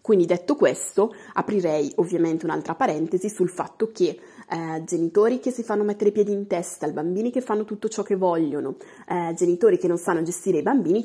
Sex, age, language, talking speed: female, 20-39, Italian, 195 wpm